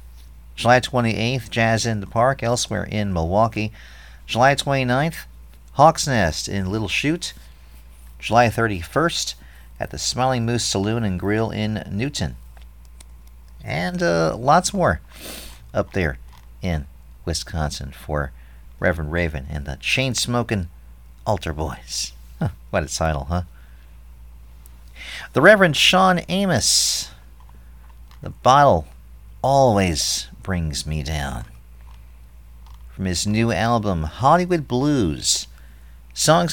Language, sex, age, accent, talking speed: English, male, 50-69, American, 105 wpm